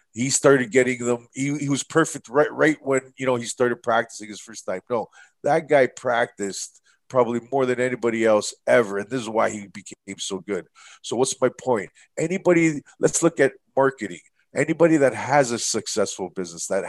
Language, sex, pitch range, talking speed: English, male, 110-140 Hz, 190 wpm